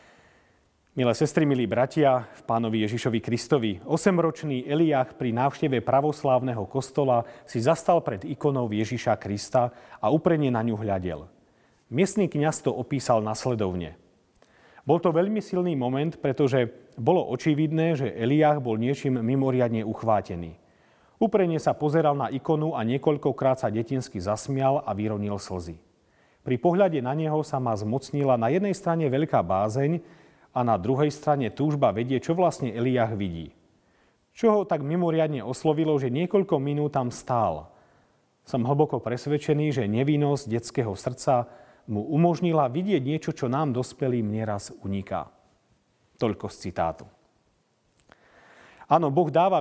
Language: Slovak